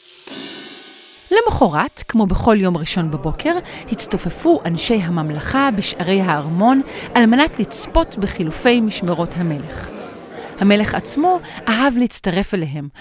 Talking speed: 100 wpm